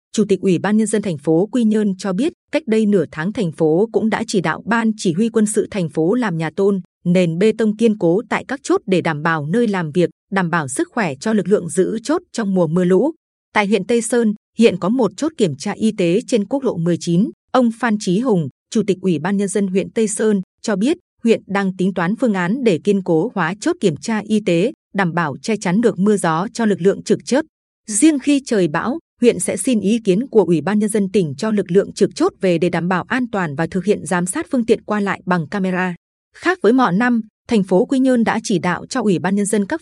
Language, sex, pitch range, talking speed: Vietnamese, female, 180-230 Hz, 260 wpm